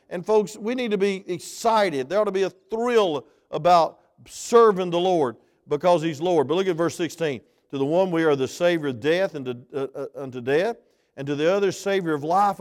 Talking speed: 225 wpm